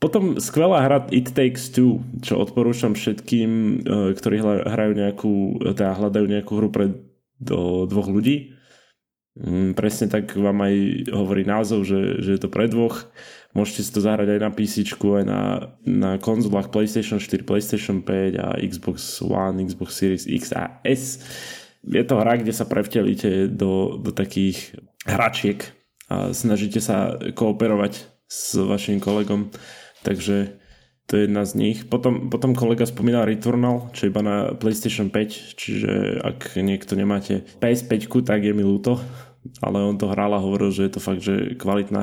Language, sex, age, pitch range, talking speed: Slovak, male, 20-39, 100-115 Hz, 155 wpm